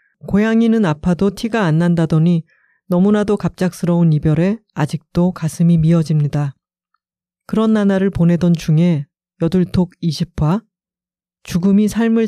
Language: Korean